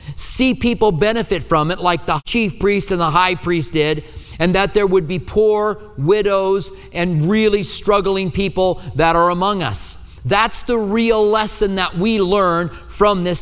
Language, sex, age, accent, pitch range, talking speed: English, male, 40-59, American, 160-210 Hz, 170 wpm